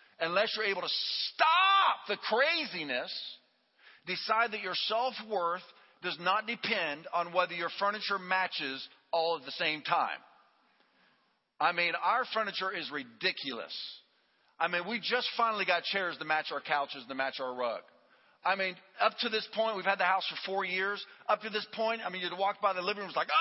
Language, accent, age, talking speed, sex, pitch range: English, American, 40-59, 190 wpm, male, 185-230 Hz